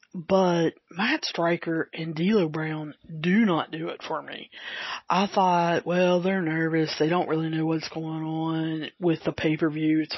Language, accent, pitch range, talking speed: English, American, 155-180 Hz, 165 wpm